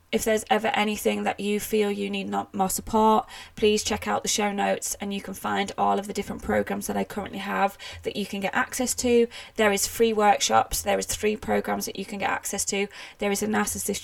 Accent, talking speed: British, 230 wpm